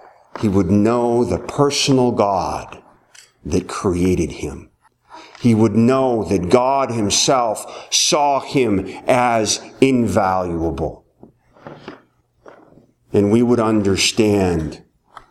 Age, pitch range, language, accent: 40-59, 90-120 Hz, English, American